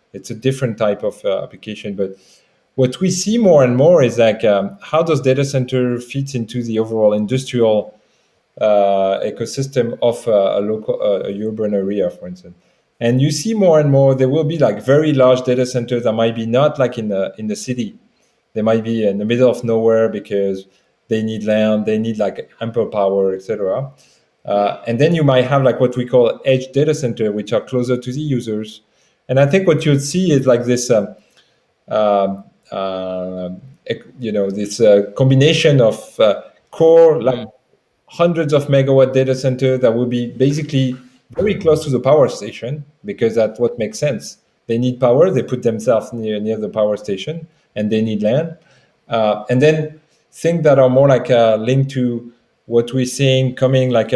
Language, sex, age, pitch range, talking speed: English, male, 30-49, 110-140 Hz, 190 wpm